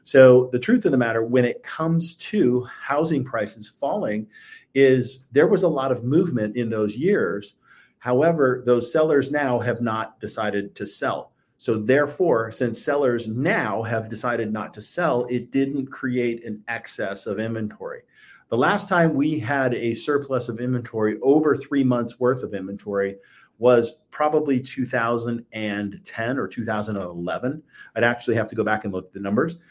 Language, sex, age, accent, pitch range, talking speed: English, male, 40-59, American, 110-140 Hz, 160 wpm